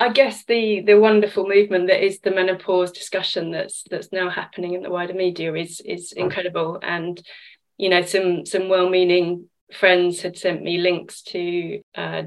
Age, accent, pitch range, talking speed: 20-39, British, 175-200 Hz, 170 wpm